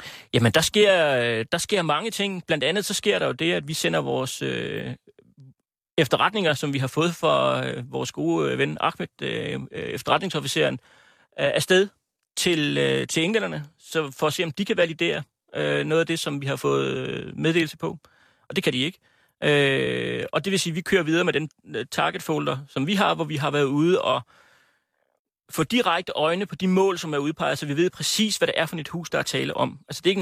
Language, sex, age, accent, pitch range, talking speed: Danish, male, 30-49, native, 150-185 Hz, 220 wpm